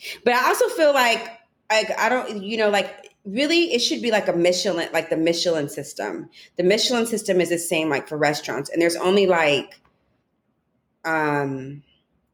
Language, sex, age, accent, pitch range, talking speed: English, female, 30-49, American, 150-180 Hz, 175 wpm